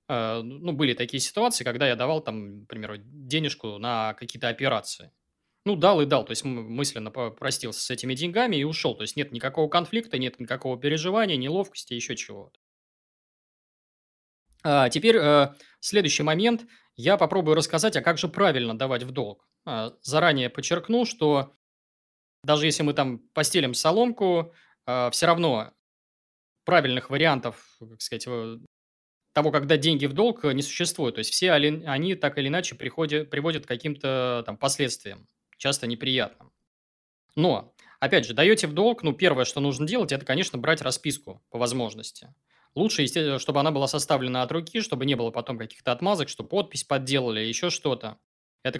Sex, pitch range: male, 125-160 Hz